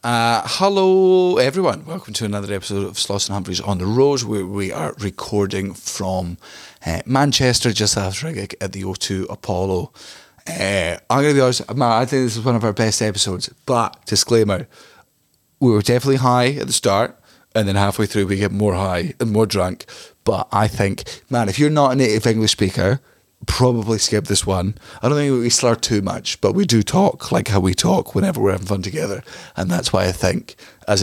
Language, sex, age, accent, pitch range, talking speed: English, male, 30-49, British, 100-135 Hz, 200 wpm